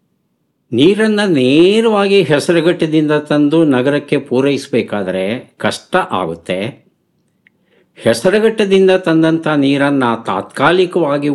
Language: Kannada